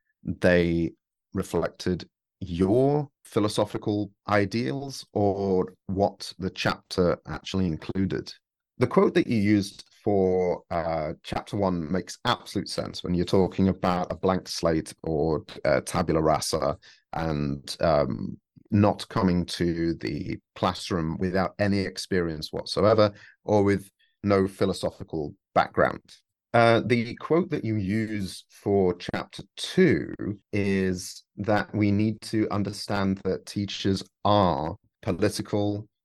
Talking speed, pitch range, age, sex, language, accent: 115 wpm, 90-105 Hz, 30-49, male, English, British